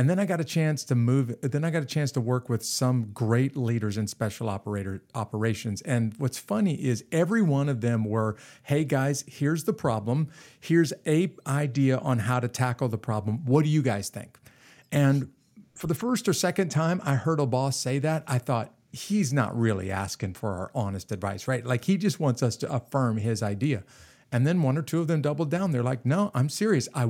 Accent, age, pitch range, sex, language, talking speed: American, 50-69, 120-150 Hz, male, English, 220 wpm